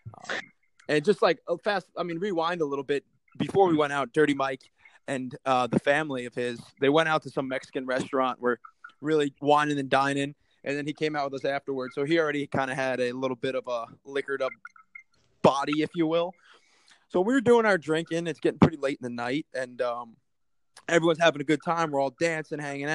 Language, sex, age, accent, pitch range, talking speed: English, male, 20-39, American, 135-170 Hz, 220 wpm